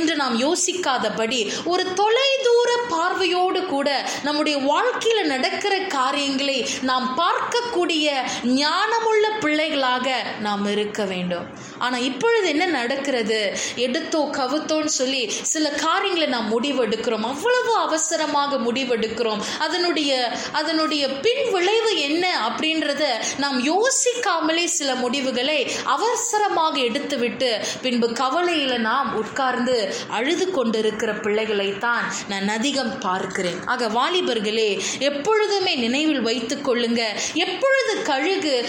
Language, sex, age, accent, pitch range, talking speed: Tamil, female, 20-39, native, 245-360 Hz, 95 wpm